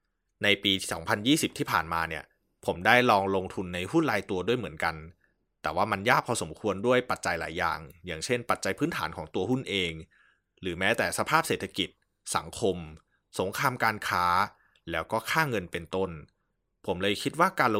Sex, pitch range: male, 85-110 Hz